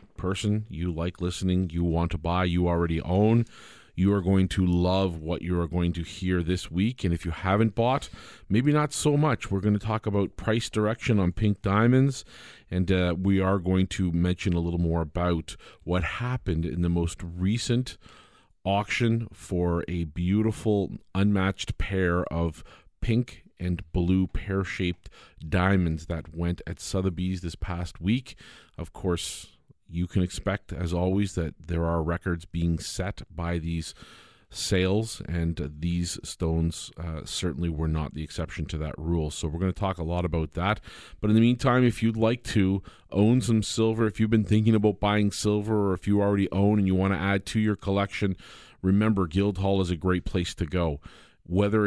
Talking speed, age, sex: 180 wpm, 40-59, male